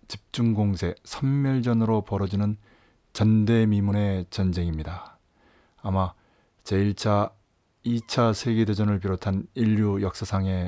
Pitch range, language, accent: 95-115 Hz, Korean, native